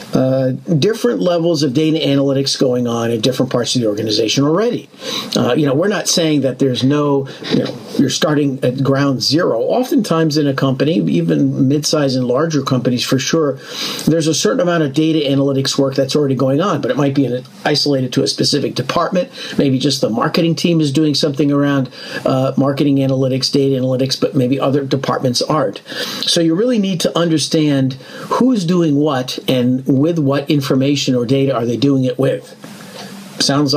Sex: male